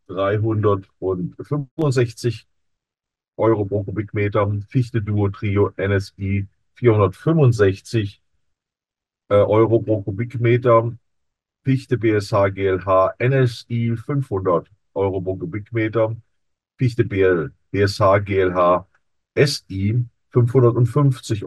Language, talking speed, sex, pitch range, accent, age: German, 75 wpm, male, 95-120 Hz, German, 40-59